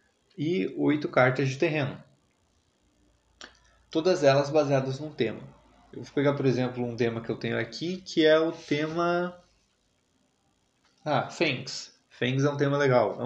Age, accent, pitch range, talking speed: 20-39, Brazilian, 120-150 Hz, 150 wpm